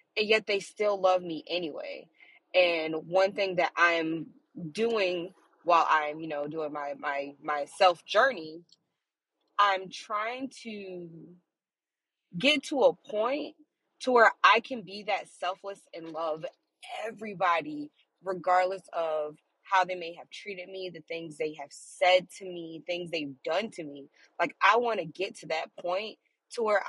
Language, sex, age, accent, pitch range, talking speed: English, female, 20-39, American, 165-235 Hz, 150 wpm